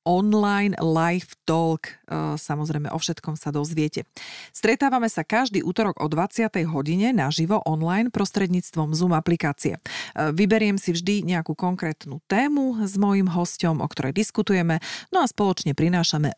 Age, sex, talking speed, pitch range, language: 30-49, female, 135 wpm, 155-210 Hz, Slovak